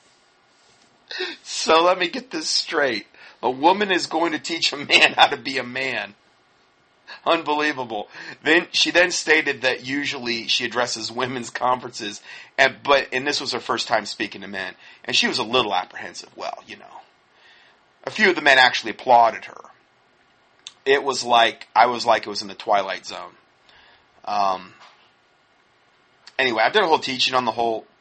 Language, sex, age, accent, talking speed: English, male, 40-59, American, 170 wpm